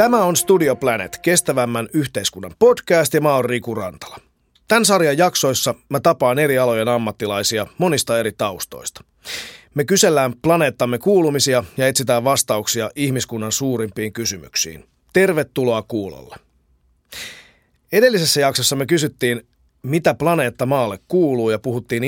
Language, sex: Finnish, male